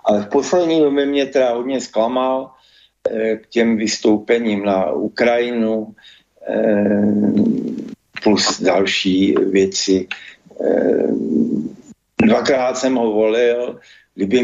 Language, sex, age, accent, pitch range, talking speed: Czech, male, 60-79, native, 105-125 Hz, 85 wpm